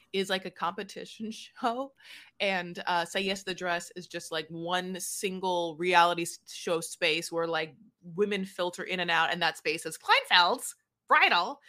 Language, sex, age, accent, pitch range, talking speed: English, female, 20-39, American, 170-205 Hz, 165 wpm